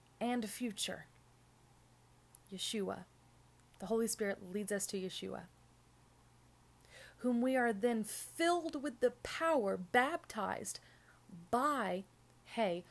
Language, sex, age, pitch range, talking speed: English, female, 30-49, 180-235 Hz, 100 wpm